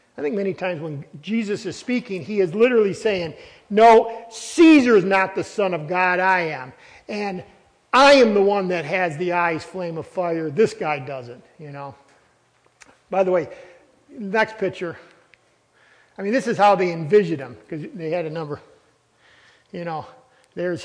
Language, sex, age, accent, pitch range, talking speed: English, male, 50-69, American, 165-220 Hz, 175 wpm